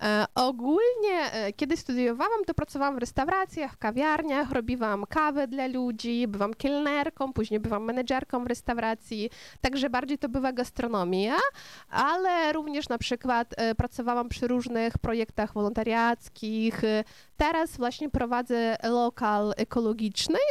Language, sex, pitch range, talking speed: Polish, female, 215-275 Hz, 115 wpm